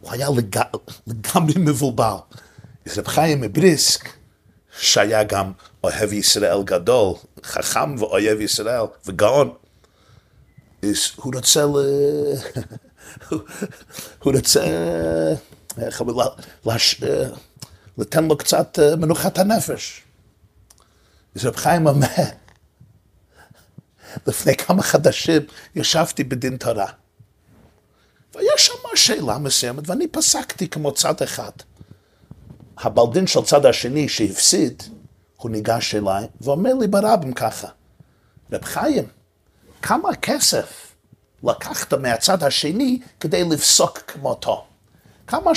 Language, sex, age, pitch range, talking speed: Hebrew, male, 50-69, 105-155 Hz, 90 wpm